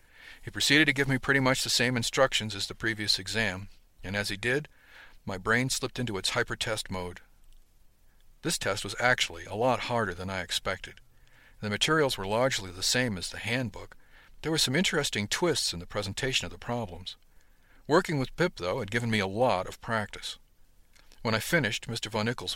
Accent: American